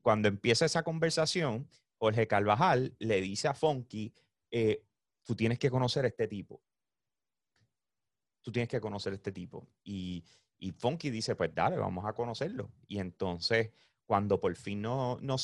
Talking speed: 150 wpm